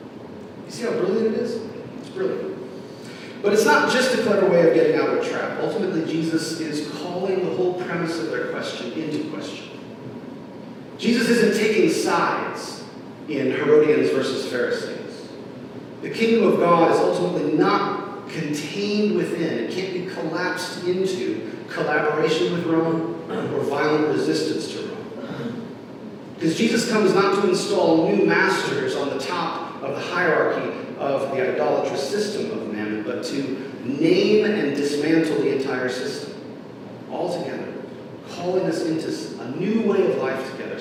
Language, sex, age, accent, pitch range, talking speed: English, male, 40-59, American, 160-225 Hz, 150 wpm